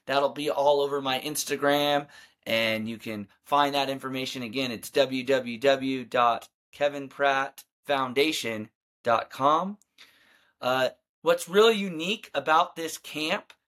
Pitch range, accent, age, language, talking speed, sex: 130-155 Hz, American, 20-39, English, 90 wpm, male